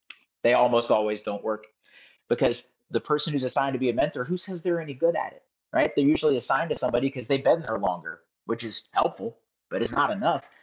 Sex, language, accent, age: male, English, American, 40-59